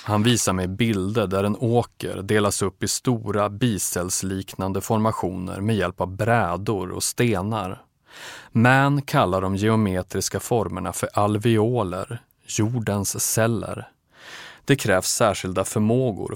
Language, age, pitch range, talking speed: Swedish, 30-49, 95-120 Hz, 115 wpm